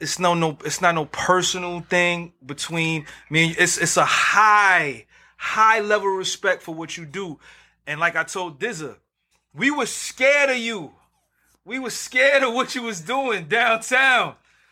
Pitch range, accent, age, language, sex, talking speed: 160-225 Hz, American, 30-49, English, male, 170 wpm